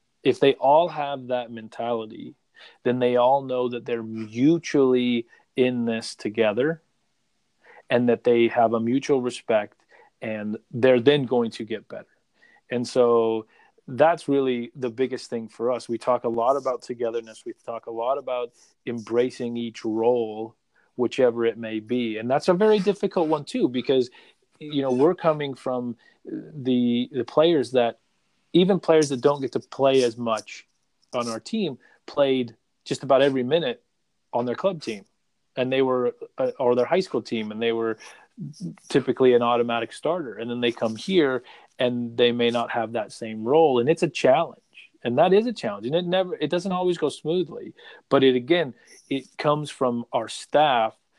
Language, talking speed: English, 175 wpm